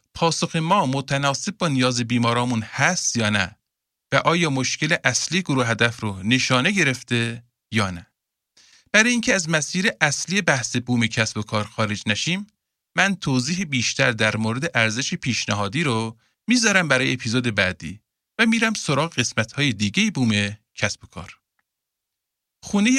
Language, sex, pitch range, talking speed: Persian, male, 110-170 Hz, 145 wpm